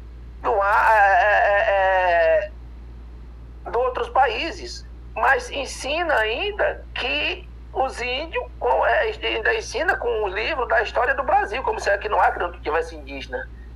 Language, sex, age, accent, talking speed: Portuguese, male, 50-69, Brazilian, 150 wpm